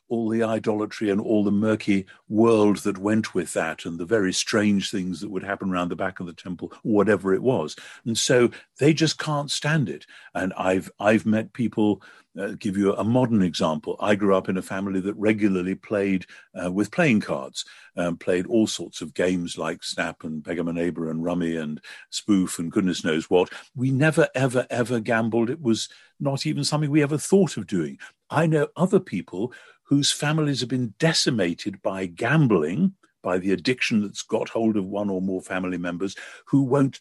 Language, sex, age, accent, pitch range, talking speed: English, male, 50-69, British, 95-140 Hz, 190 wpm